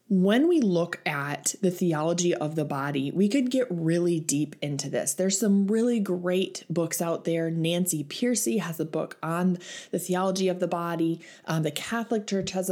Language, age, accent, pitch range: English, 20-39, American, 160-205 Hz